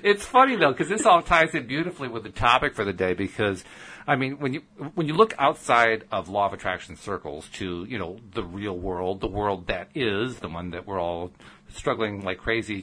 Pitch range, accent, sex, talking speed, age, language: 90-120 Hz, American, male, 220 wpm, 50-69, English